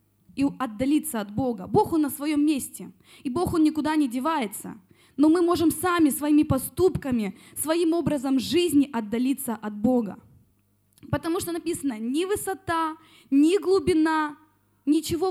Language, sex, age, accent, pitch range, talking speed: Russian, female, 20-39, native, 245-325 Hz, 135 wpm